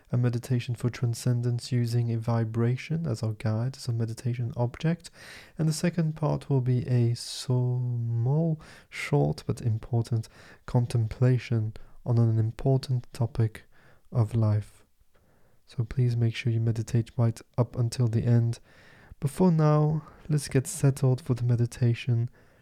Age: 20-39